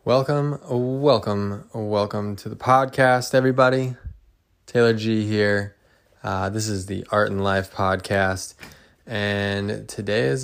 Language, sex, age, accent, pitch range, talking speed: English, male, 20-39, American, 95-110 Hz, 120 wpm